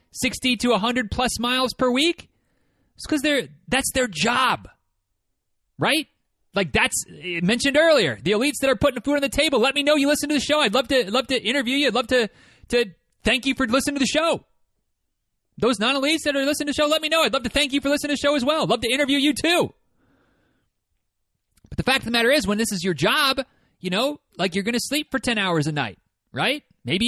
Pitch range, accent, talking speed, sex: 180-270 Hz, American, 245 wpm, male